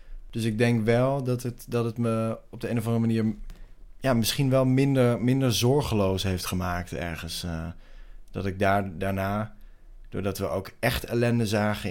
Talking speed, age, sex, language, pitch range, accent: 175 wpm, 20-39, male, English, 95-115 Hz, Dutch